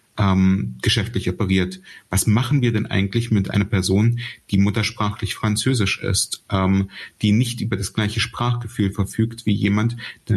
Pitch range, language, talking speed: 100-115 Hz, German, 150 wpm